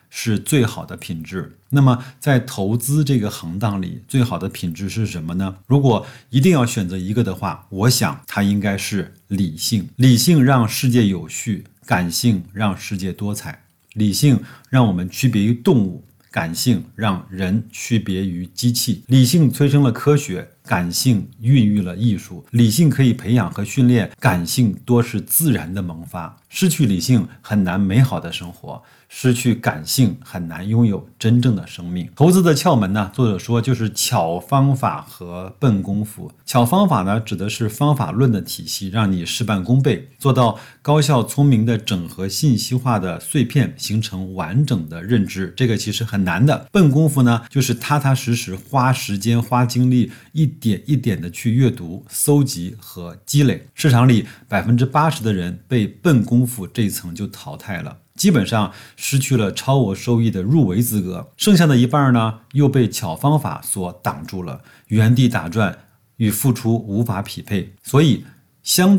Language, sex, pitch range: Chinese, male, 100-130 Hz